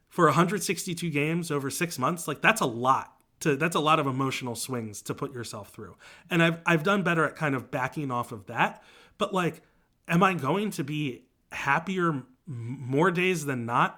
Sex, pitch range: male, 135-175 Hz